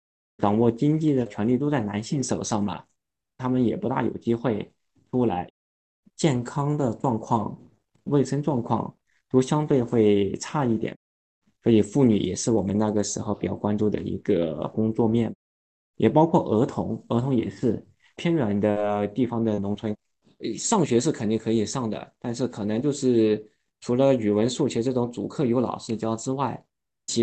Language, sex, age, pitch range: Chinese, male, 20-39, 105-125 Hz